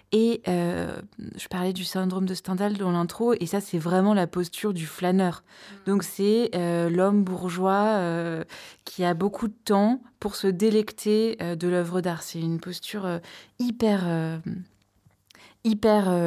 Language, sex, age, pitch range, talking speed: French, female, 20-39, 175-210 Hz, 160 wpm